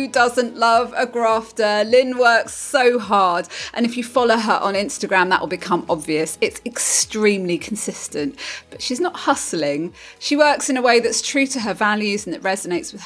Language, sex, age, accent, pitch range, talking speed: English, female, 30-49, British, 195-280 Hz, 190 wpm